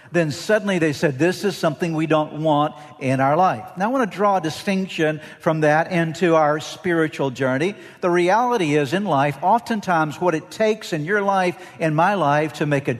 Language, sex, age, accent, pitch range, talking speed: English, male, 60-79, American, 130-175 Hz, 205 wpm